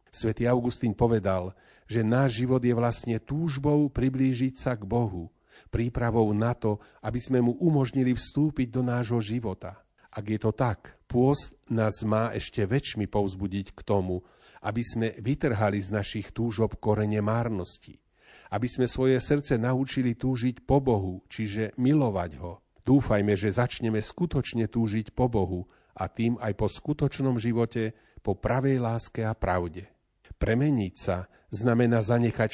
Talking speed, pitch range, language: 140 wpm, 105-125 Hz, Slovak